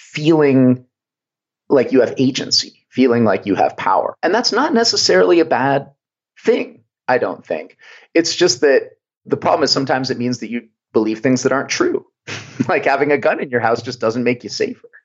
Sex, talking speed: male, 190 wpm